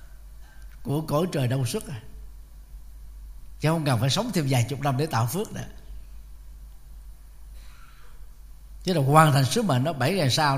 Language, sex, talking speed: Vietnamese, male, 160 wpm